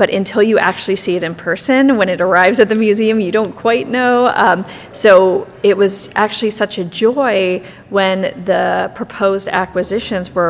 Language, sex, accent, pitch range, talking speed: English, female, American, 180-215 Hz, 175 wpm